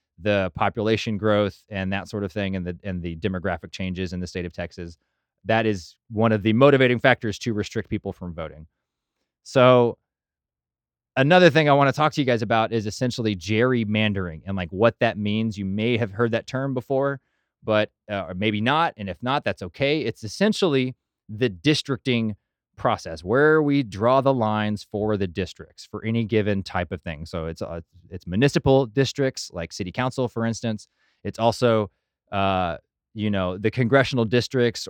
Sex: male